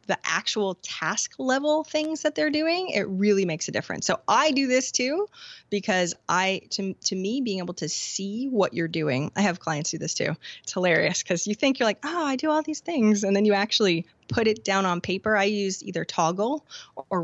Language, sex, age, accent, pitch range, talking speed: English, female, 20-39, American, 185-260 Hz, 220 wpm